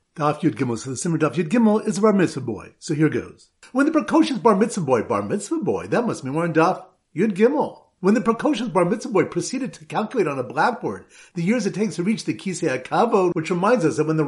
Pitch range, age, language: 155-220 Hz, 50-69, English